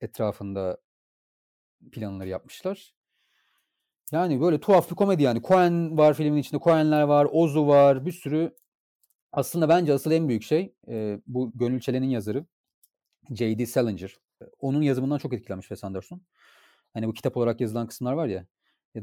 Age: 40-59